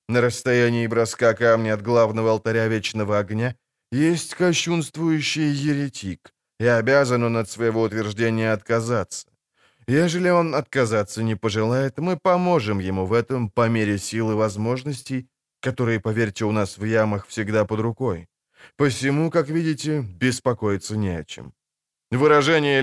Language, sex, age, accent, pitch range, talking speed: Ukrainian, male, 20-39, native, 110-140 Hz, 135 wpm